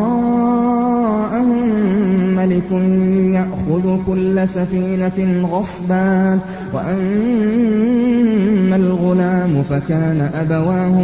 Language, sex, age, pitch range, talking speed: Arabic, male, 20-39, 160-190 Hz, 55 wpm